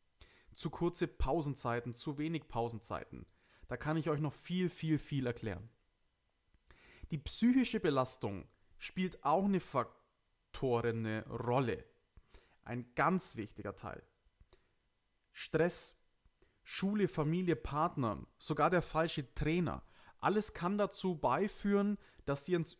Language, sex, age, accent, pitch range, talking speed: German, male, 30-49, German, 125-180 Hz, 110 wpm